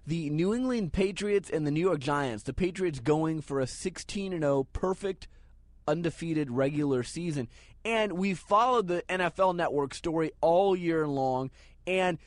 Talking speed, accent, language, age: 155 wpm, American, English, 30-49